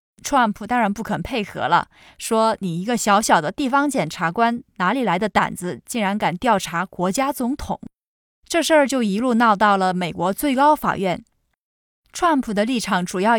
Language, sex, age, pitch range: Chinese, female, 20-39, 190-265 Hz